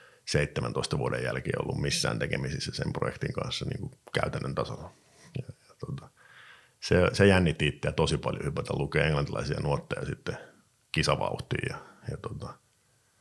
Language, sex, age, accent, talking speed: Finnish, male, 50-69, native, 125 wpm